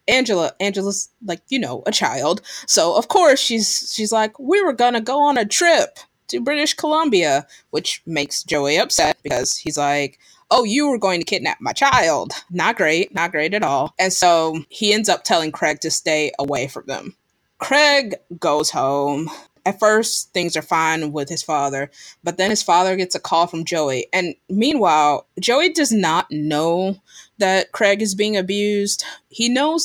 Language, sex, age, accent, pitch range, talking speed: English, female, 20-39, American, 150-215 Hz, 180 wpm